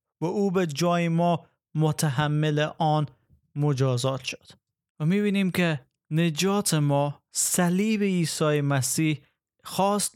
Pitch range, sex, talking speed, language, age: 140-170 Hz, male, 105 wpm, Persian, 30-49